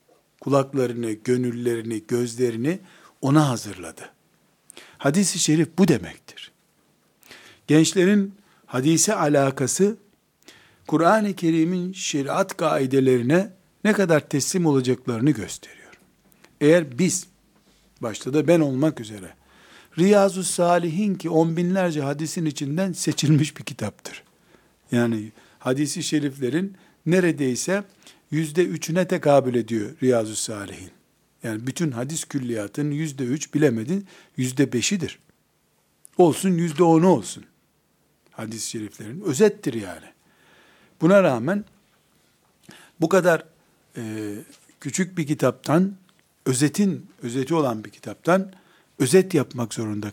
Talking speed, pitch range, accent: 90 wpm, 125-175 Hz, native